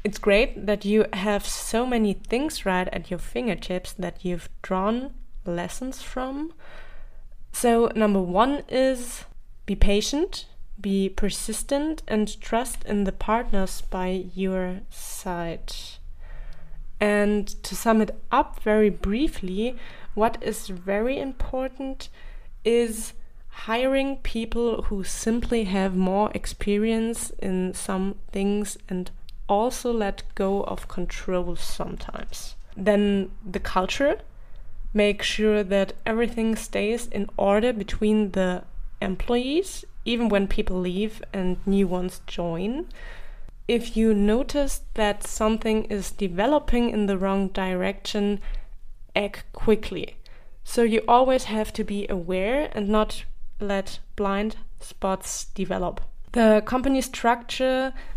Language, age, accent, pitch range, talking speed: German, 20-39, German, 195-235 Hz, 115 wpm